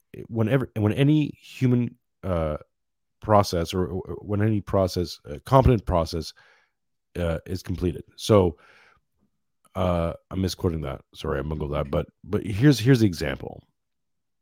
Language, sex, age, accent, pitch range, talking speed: English, male, 40-59, American, 90-110 Hz, 135 wpm